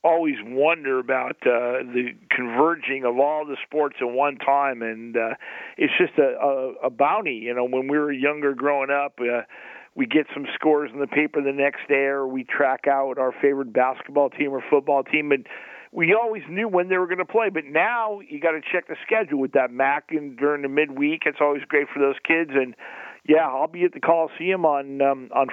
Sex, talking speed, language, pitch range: male, 215 wpm, English, 135-165 Hz